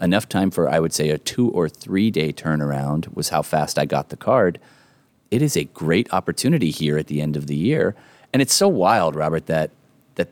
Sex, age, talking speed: male, 30-49, 215 wpm